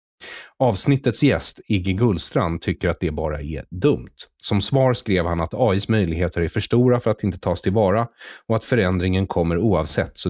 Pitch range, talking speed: 85-110 Hz, 180 wpm